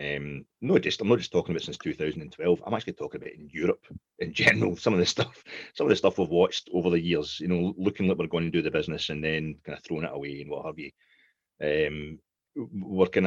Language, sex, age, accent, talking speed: English, male, 30-49, British, 245 wpm